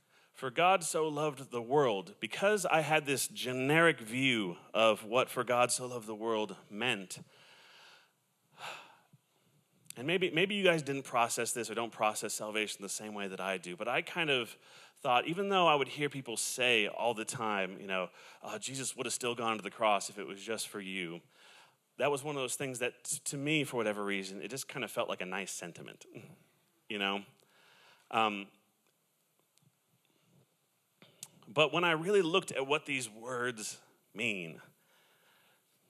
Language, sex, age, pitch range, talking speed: English, male, 30-49, 110-150 Hz, 175 wpm